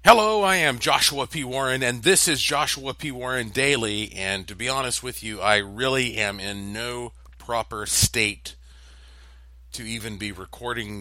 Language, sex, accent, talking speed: English, male, American, 165 wpm